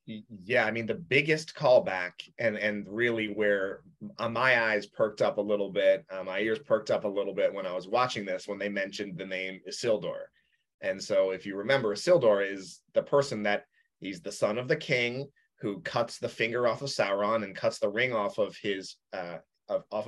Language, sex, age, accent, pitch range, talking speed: English, male, 30-49, American, 105-140 Hz, 205 wpm